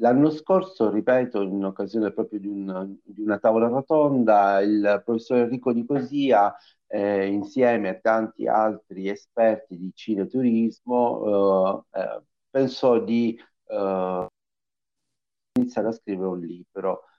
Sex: male